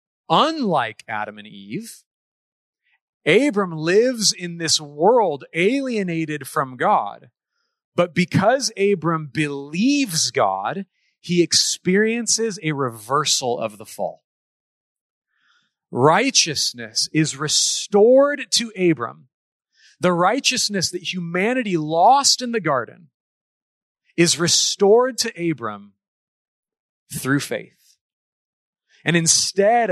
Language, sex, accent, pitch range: English, male, American, 165-230 Hz